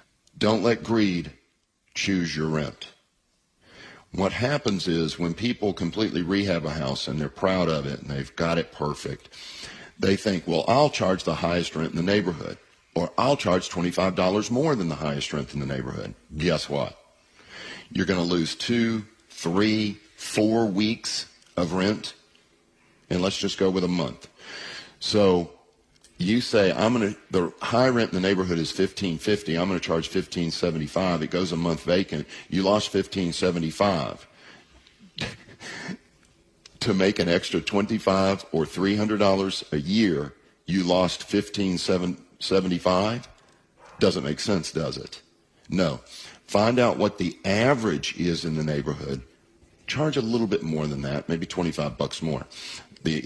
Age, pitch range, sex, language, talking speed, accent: 50-69, 80-100 Hz, male, English, 155 wpm, American